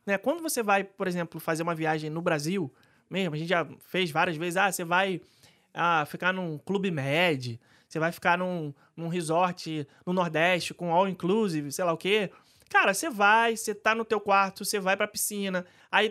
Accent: Brazilian